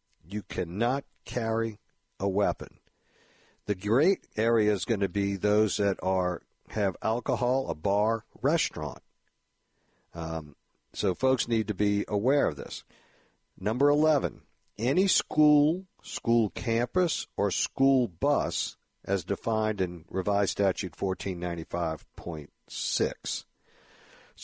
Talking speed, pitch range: 110 wpm, 95-125 Hz